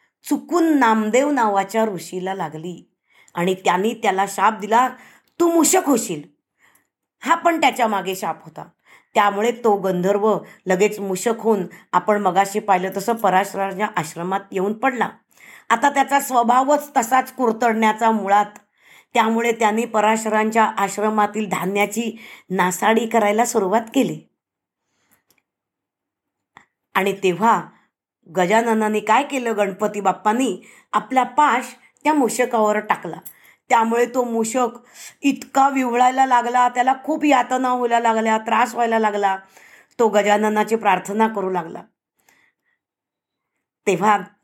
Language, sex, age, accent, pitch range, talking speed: Marathi, female, 20-39, native, 200-255 Hz, 110 wpm